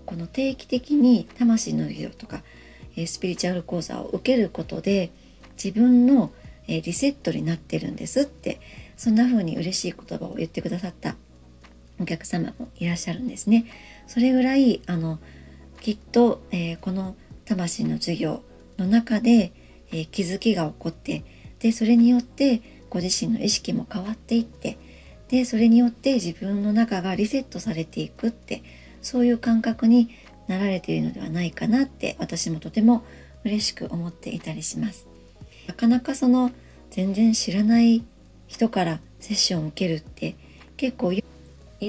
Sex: male